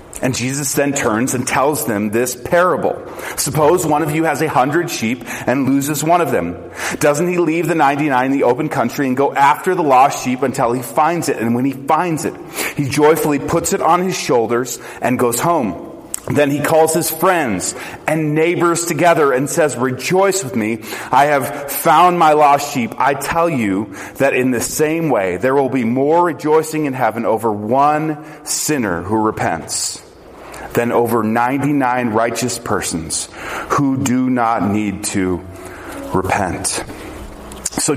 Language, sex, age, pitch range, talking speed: English, male, 30-49, 125-160 Hz, 170 wpm